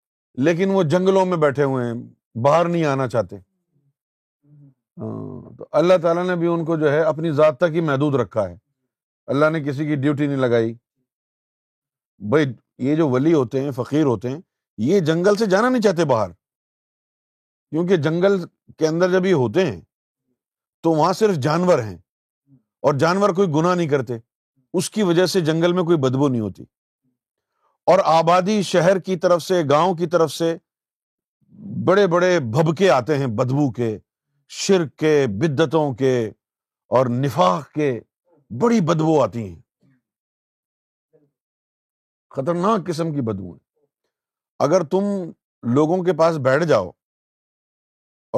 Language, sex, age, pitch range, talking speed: Urdu, male, 50-69, 130-175 Hz, 145 wpm